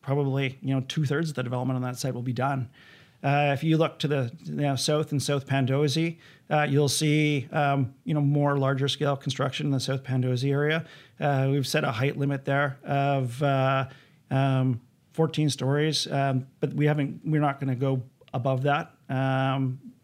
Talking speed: 195 wpm